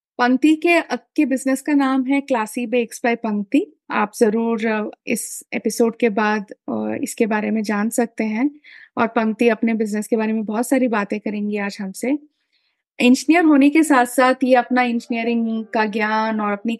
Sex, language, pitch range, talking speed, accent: female, Hindi, 225-255 Hz, 165 wpm, native